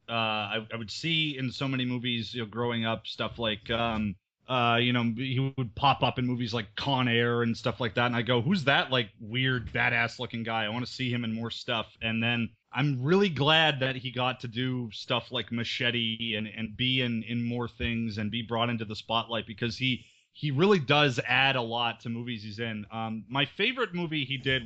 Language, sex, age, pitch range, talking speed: English, male, 30-49, 115-130 Hz, 230 wpm